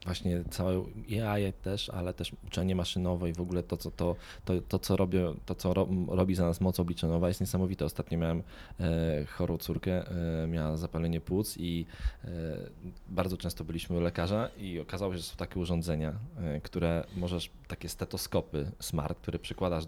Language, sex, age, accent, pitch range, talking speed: Polish, male, 20-39, native, 85-100 Hz, 180 wpm